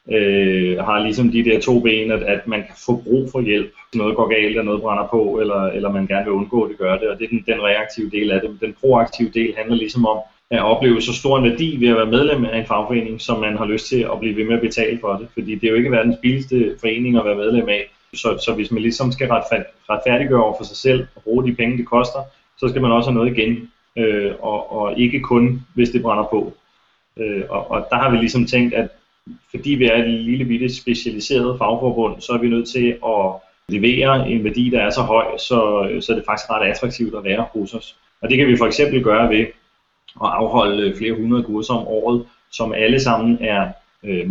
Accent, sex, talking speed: native, male, 245 wpm